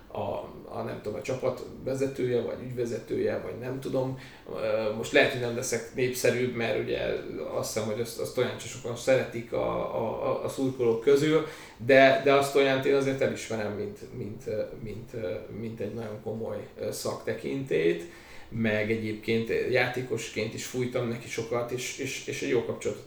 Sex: male